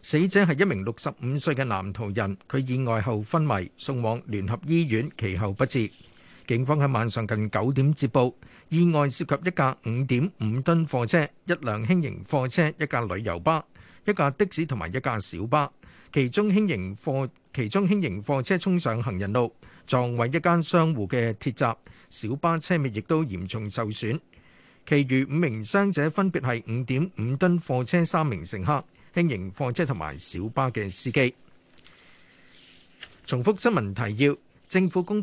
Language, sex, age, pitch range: Chinese, male, 50-69, 115-165 Hz